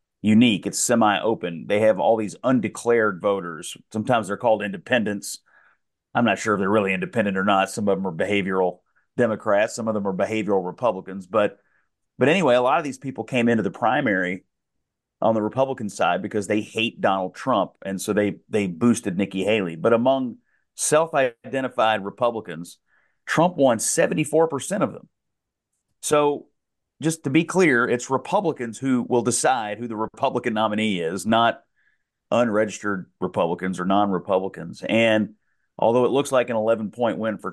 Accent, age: American, 30-49